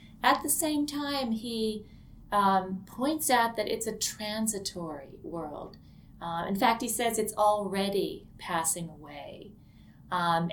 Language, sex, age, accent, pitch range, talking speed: English, female, 30-49, American, 185-220 Hz, 130 wpm